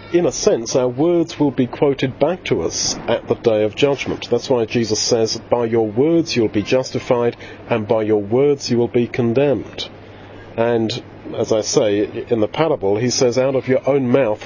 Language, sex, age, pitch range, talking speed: English, male, 40-59, 105-135 Hz, 200 wpm